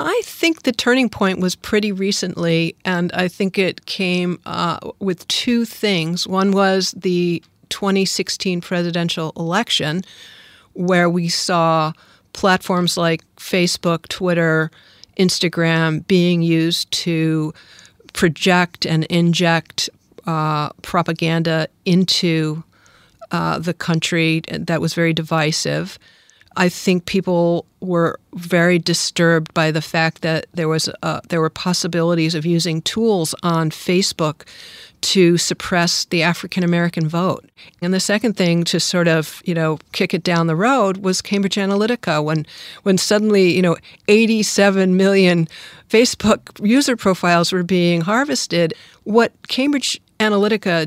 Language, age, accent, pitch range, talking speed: English, 50-69, American, 165-195 Hz, 125 wpm